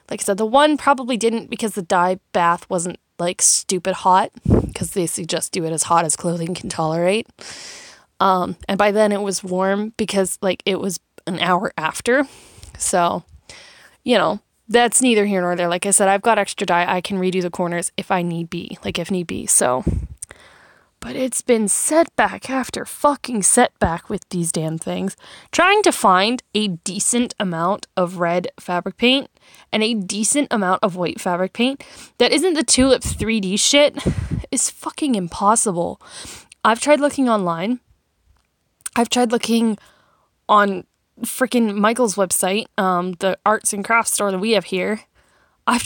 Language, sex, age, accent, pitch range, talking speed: English, female, 10-29, American, 185-245 Hz, 170 wpm